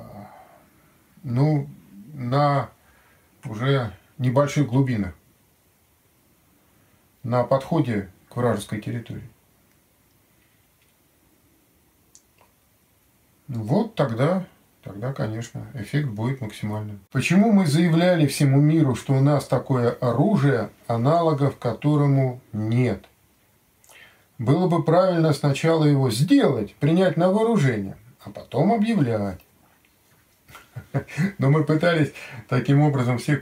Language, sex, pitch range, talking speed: Russian, male, 105-145 Hz, 85 wpm